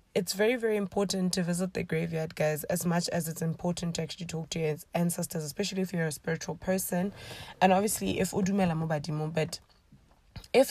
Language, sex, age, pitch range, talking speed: English, female, 20-39, 175-210 Hz, 175 wpm